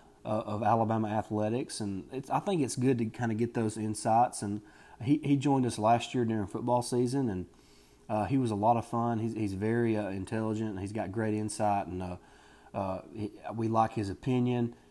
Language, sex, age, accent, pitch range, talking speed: English, male, 30-49, American, 105-115 Hz, 200 wpm